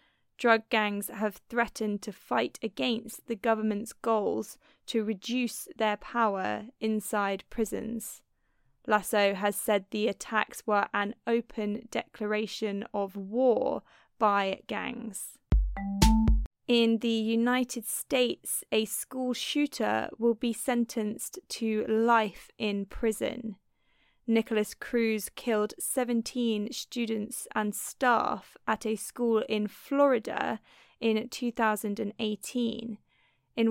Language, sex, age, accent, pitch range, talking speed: English, female, 20-39, British, 210-235 Hz, 105 wpm